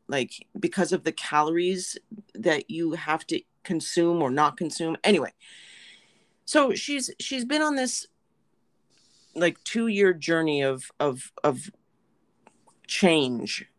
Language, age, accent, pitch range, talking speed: English, 40-59, American, 150-190 Hz, 120 wpm